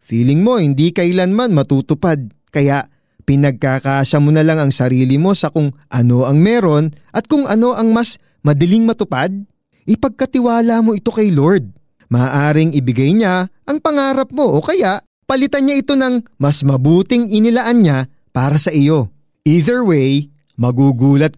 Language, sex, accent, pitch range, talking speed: Filipino, male, native, 135-190 Hz, 145 wpm